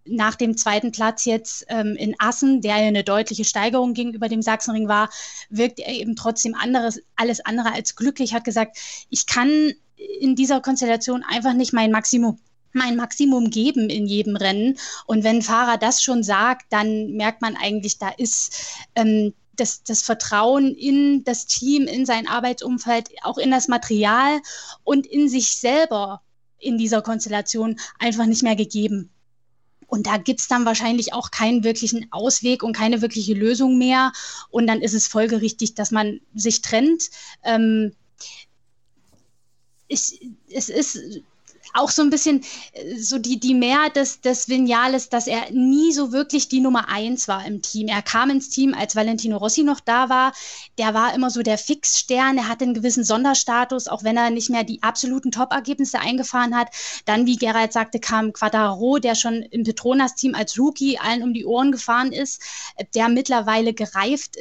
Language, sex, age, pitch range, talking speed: German, female, 10-29, 220-260 Hz, 170 wpm